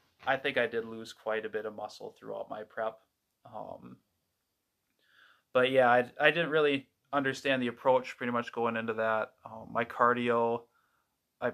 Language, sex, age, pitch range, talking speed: English, male, 20-39, 110-125 Hz, 165 wpm